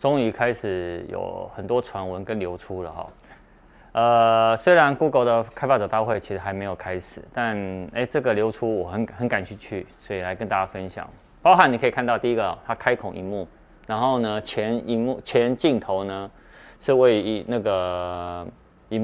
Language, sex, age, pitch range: Chinese, male, 20-39, 95-125 Hz